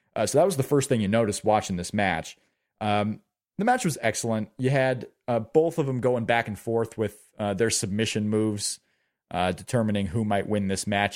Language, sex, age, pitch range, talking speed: English, male, 30-49, 105-135 Hz, 210 wpm